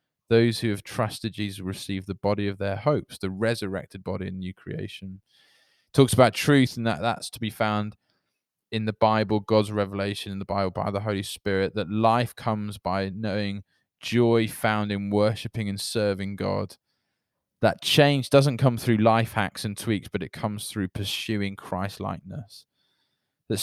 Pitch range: 100-115 Hz